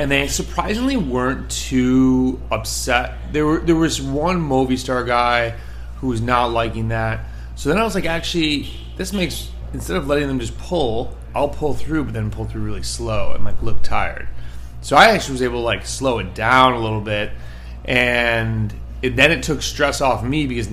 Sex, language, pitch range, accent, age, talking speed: male, English, 105-130 Hz, American, 30-49, 195 wpm